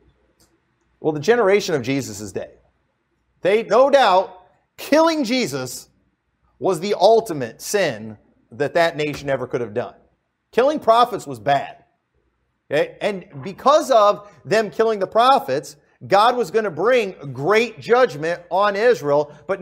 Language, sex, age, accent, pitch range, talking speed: English, male, 40-59, American, 160-225 Hz, 135 wpm